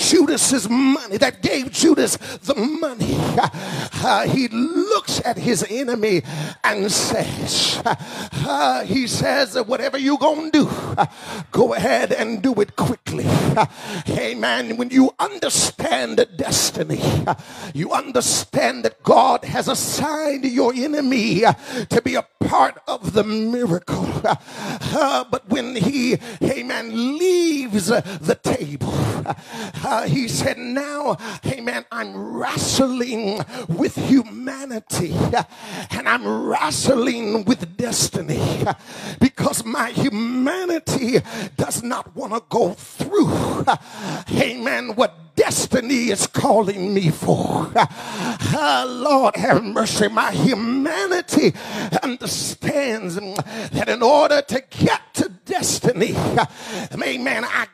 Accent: American